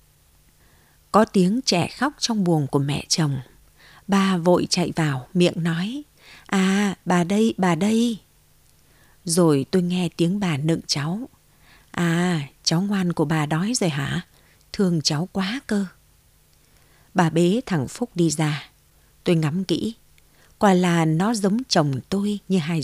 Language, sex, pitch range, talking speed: Vietnamese, female, 155-200 Hz, 145 wpm